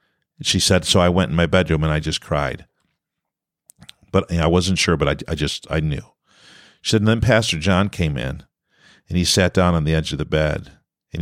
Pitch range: 85-125 Hz